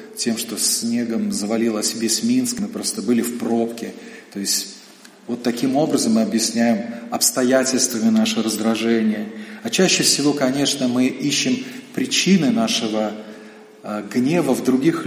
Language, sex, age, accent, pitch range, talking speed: Russian, male, 40-59, native, 115-185 Hz, 135 wpm